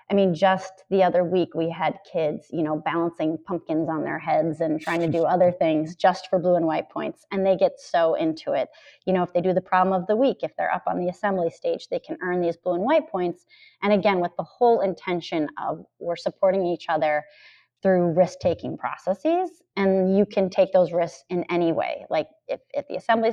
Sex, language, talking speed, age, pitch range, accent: female, English, 225 wpm, 30-49, 170-205 Hz, American